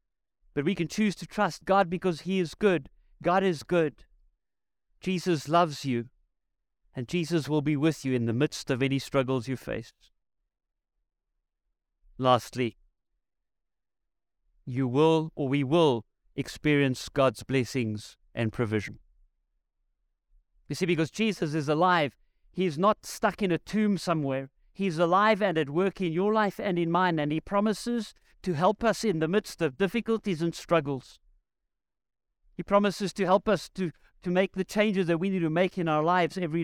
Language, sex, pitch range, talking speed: English, male, 130-185 Hz, 160 wpm